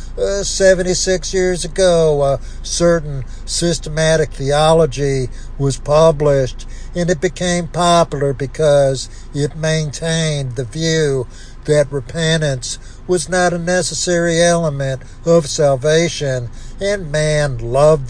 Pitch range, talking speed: 135-170 Hz, 105 wpm